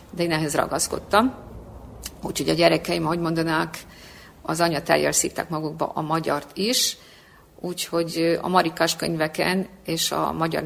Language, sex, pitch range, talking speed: Hungarian, female, 160-190 Hz, 130 wpm